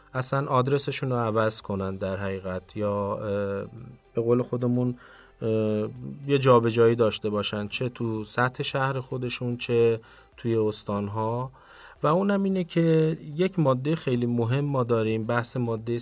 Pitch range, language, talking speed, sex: 110-135 Hz, Persian, 135 wpm, male